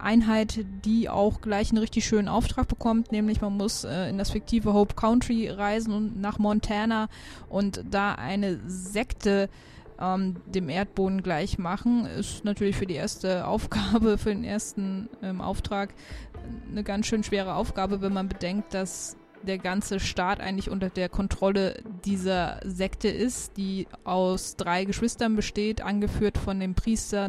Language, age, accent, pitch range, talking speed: German, 20-39, German, 190-215 Hz, 155 wpm